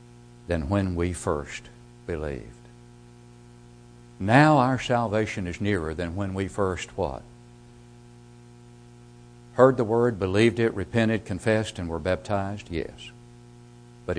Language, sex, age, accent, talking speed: English, male, 60-79, American, 115 wpm